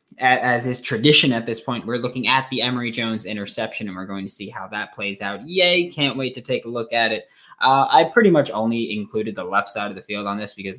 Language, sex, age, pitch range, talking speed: English, male, 20-39, 110-145 Hz, 255 wpm